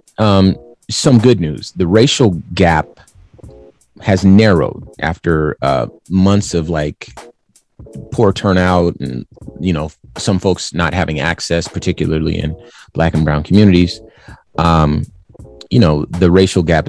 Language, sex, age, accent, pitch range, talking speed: English, male, 30-49, American, 80-100 Hz, 130 wpm